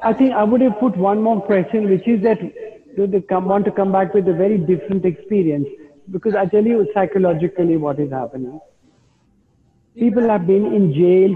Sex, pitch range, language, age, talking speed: male, 170-220 Hz, English, 50-69, 195 wpm